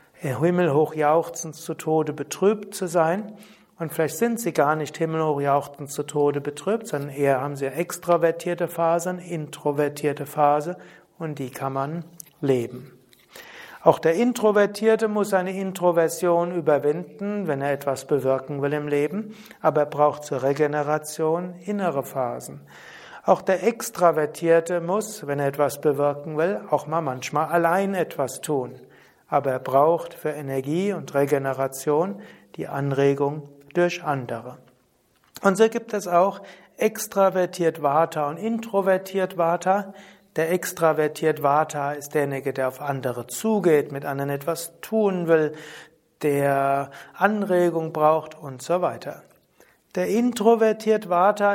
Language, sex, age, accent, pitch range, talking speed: German, male, 60-79, German, 145-185 Hz, 130 wpm